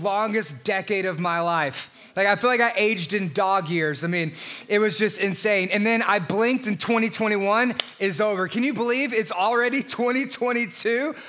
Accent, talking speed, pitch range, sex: American, 180 wpm, 195-235 Hz, male